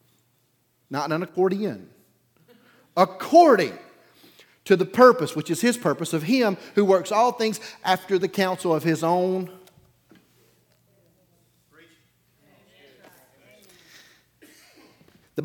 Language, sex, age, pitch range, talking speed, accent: English, male, 40-59, 125-190 Hz, 95 wpm, American